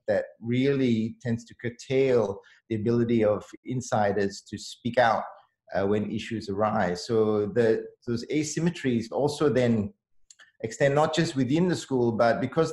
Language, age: English, 30-49